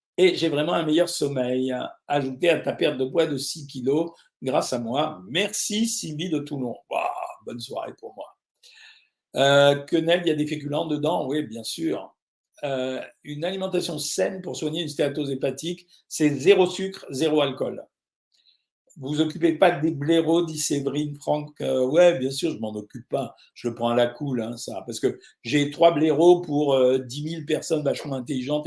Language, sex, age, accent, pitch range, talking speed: French, male, 50-69, French, 135-175 Hz, 185 wpm